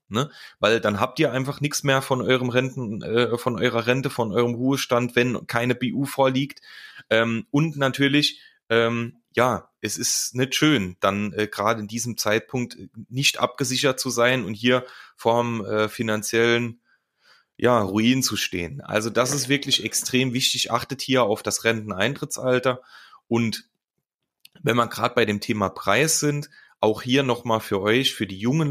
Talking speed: 165 wpm